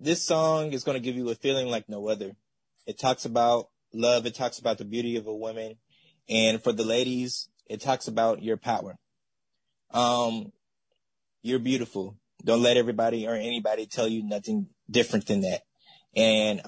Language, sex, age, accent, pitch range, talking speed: English, male, 20-39, American, 110-125 Hz, 175 wpm